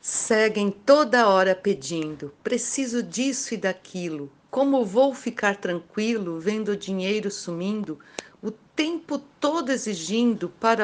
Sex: female